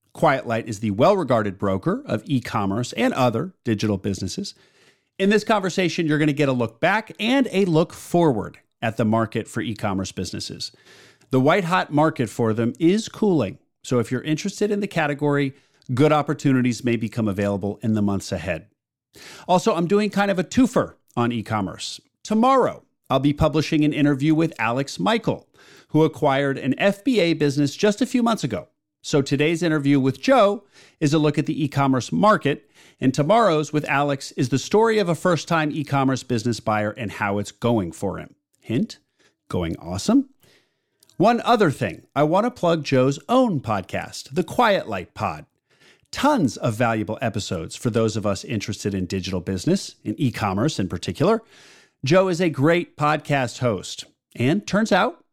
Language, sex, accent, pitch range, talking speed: English, male, American, 115-175 Hz, 170 wpm